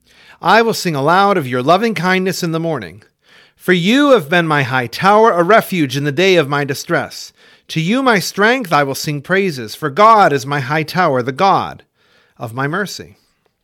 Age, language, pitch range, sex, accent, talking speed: 40-59, English, 145-210 Hz, male, American, 200 wpm